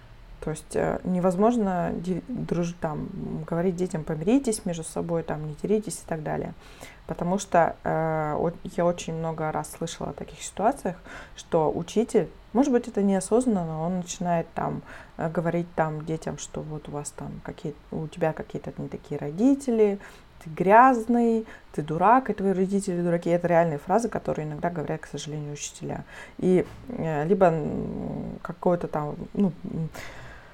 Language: Russian